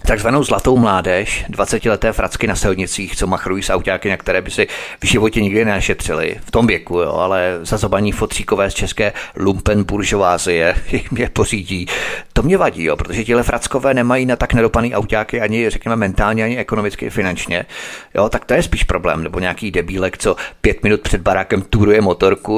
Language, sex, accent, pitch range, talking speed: Czech, male, native, 100-115 Hz, 170 wpm